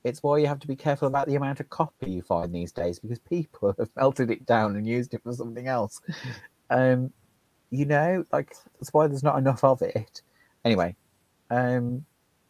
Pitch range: 100-135 Hz